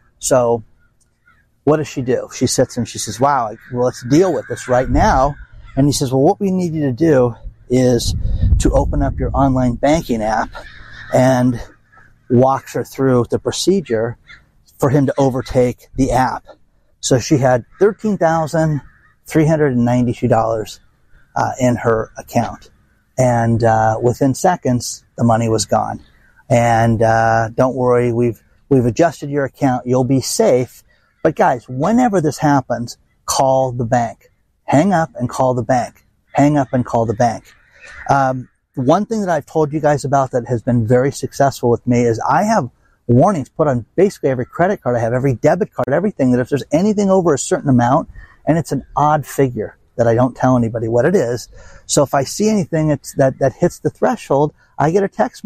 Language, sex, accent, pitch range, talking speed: English, male, American, 120-145 Hz, 175 wpm